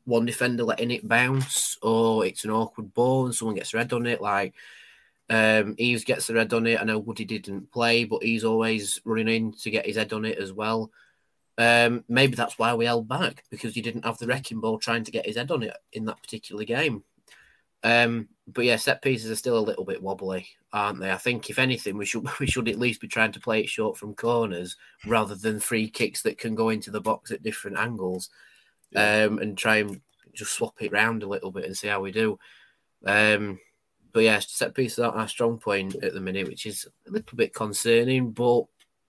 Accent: British